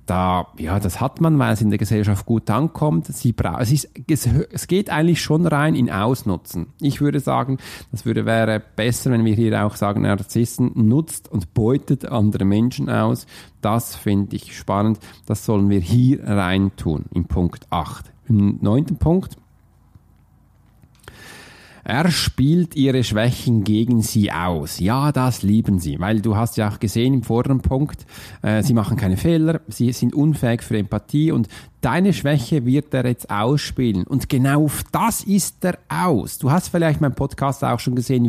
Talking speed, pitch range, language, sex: 170 wpm, 105-145 Hz, German, male